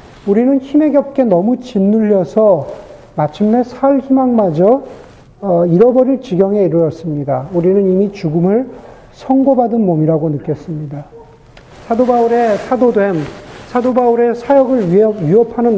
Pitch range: 175-250 Hz